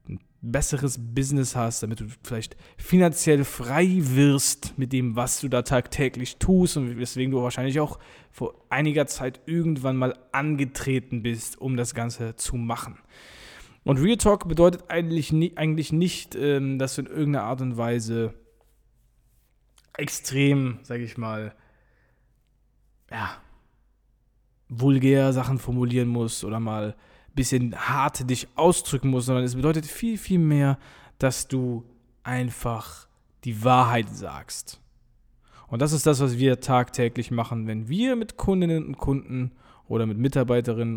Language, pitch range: German, 120-145 Hz